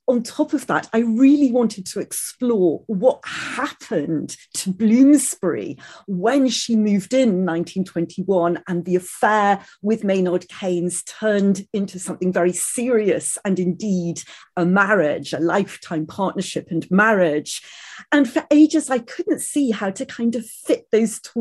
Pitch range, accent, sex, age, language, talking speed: 190-250 Hz, British, female, 40-59, English, 140 wpm